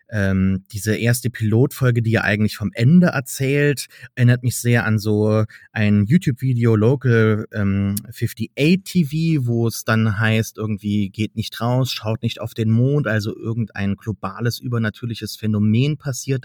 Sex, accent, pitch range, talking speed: male, German, 110-135 Hz, 145 wpm